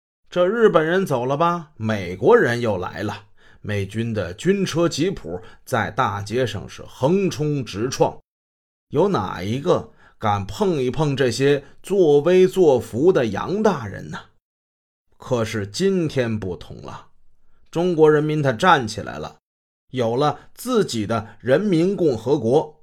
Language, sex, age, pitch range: Chinese, male, 30-49, 105-165 Hz